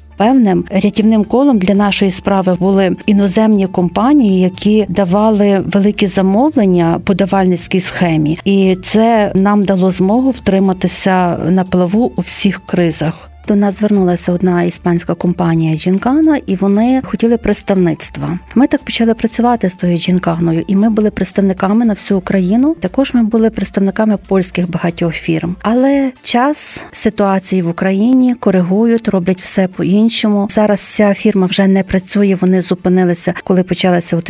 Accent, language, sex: native, Ukrainian, female